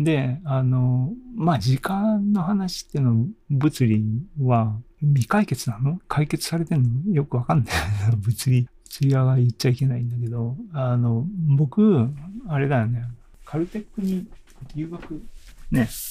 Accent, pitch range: native, 115-145 Hz